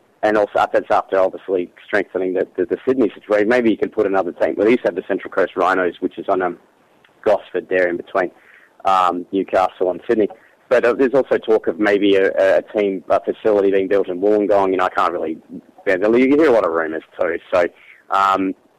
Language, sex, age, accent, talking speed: English, male, 30-49, Australian, 225 wpm